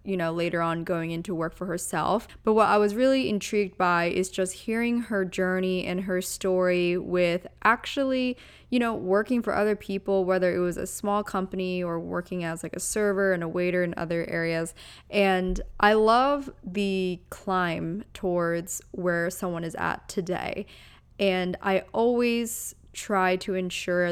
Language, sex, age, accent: English, female, 20-39, American